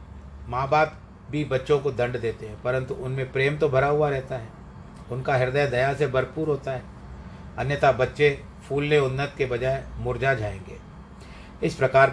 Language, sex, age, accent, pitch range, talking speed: Hindi, male, 40-59, native, 120-150 Hz, 165 wpm